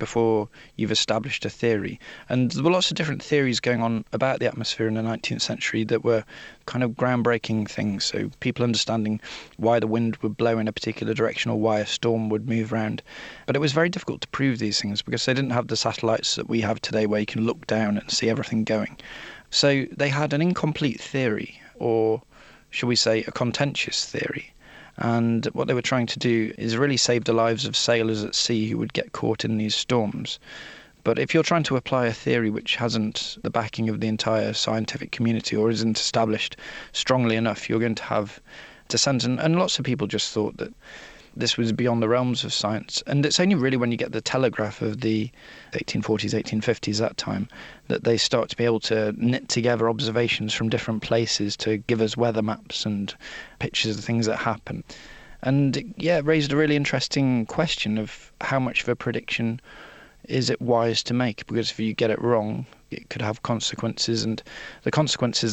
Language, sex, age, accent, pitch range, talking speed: English, male, 20-39, British, 110-125 Hz, 205 wpm